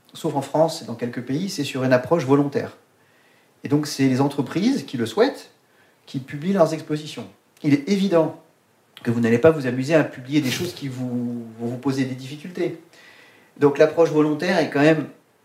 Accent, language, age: French, French, 40-59